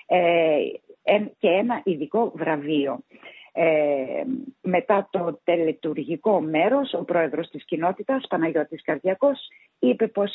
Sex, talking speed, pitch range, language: female, 100 wpm, 155-225 Hz, Greek